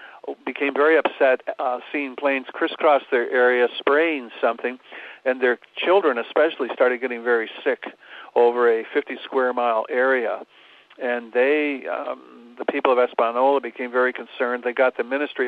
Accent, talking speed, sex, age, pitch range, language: American, 150 wpm, male, 60-79, 120-135 Hz, English